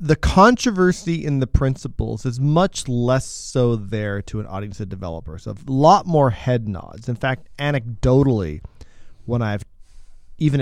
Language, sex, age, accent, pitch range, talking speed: English, male, 30-49, American, 100-140 Hz, 145 wpm